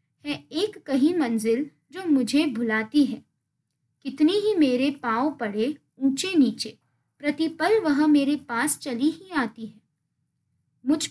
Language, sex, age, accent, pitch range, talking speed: Hindi, female, 20-39, native, 230-305 Hz, 130 wpm